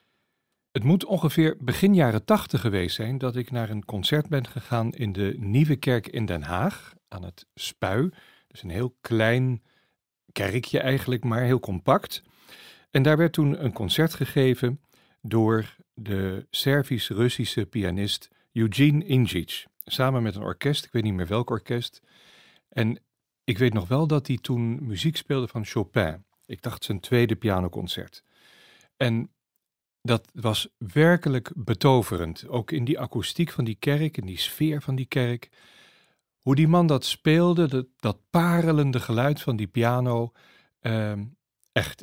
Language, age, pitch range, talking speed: Dutch, 40-59, 110-140 Hz, 150 wpm